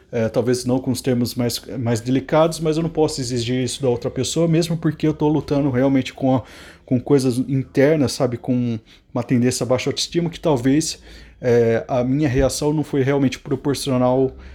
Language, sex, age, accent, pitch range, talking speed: Portuguese, male, 20-39, Brazilian, 125-150 Hz, 175 wpm